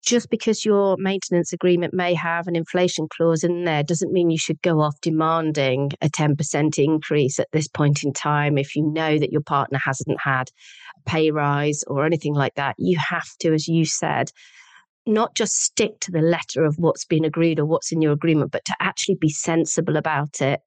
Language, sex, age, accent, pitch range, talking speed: English, female, 40-59, British, 150-180 Hz, 205 wpm